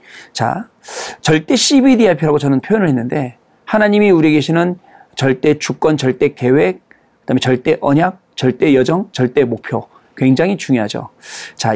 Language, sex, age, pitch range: Korean, male, 40-59, 140-205 Hz